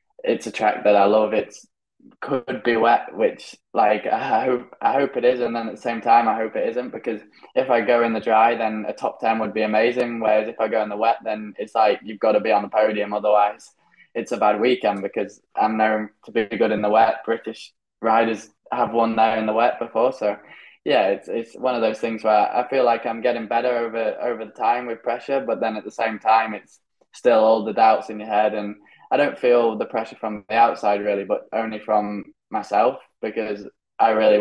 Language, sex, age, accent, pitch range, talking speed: English, male, 10-29, British, 105-115 Hz, 235 wpm